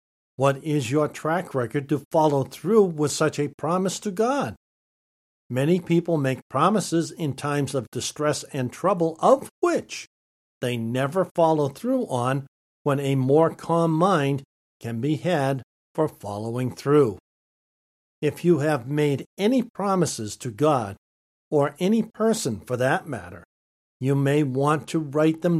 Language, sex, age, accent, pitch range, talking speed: English, male, 60-79, American, 125-170 Hz, 145 wpm